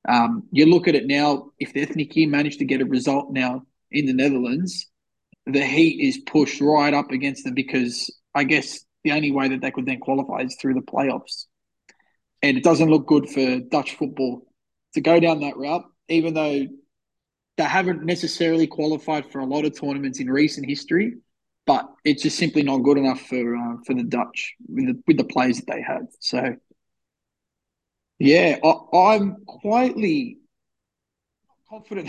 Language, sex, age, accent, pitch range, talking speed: English, male, 20-39, Australian, 135-165 Hz, 175 wpm